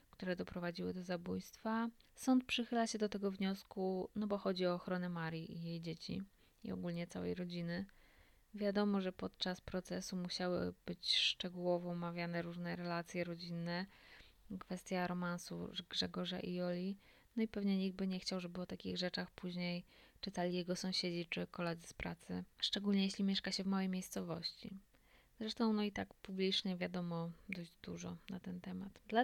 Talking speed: 160 wpm